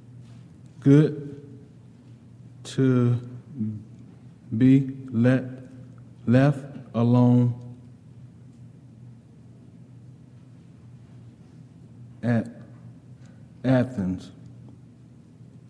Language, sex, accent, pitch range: English, male, American, 120-130 Hz